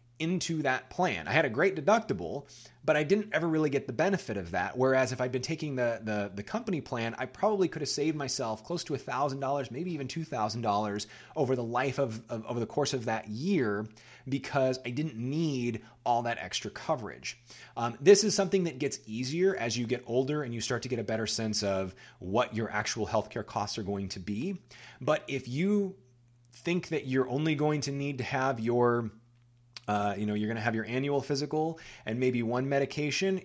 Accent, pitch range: American, 115-145 Hz